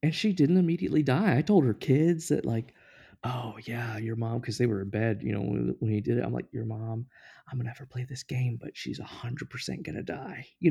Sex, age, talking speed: male, 20-39, 260 wpm